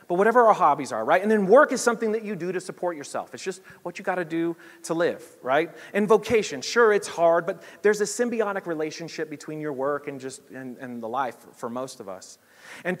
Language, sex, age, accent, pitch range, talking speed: English, male, 30-49, American, 140-190 Hz, 230 wpm